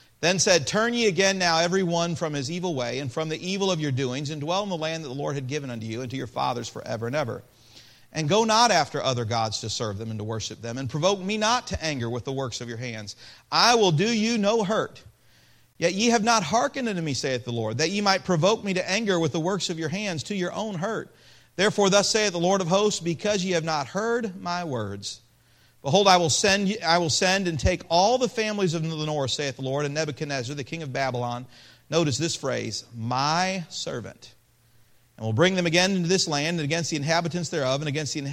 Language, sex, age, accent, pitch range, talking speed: English, male, 40-59, American, 120-175 Hz, 235 wpm